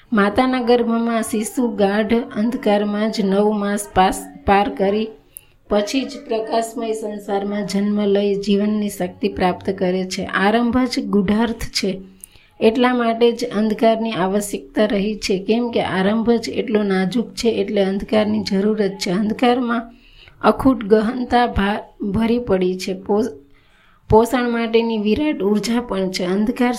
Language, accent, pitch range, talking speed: Gujarati, native, 200-230 Hz, 125 wpm